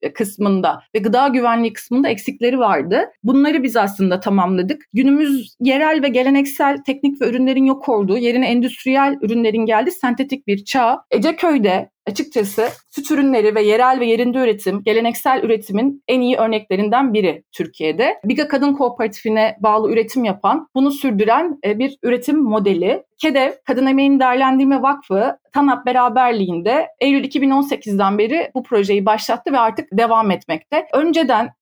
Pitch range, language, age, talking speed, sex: 215-270 Hz, Turkish, 30-49, 135 wpm, female